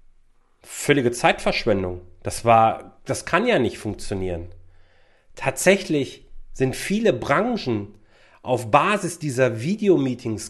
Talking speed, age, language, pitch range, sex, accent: 95 wpm, 40-59, German, 115-175 Hz, male, German